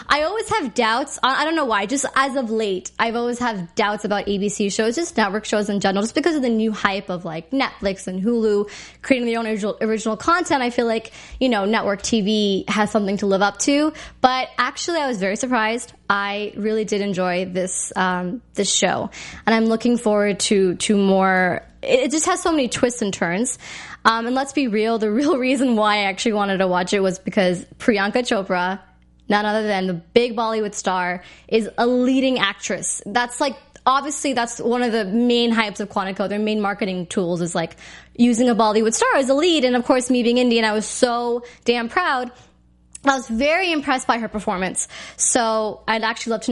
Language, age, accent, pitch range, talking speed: English, 10-29, American, 200-250 Hz, 205 wpm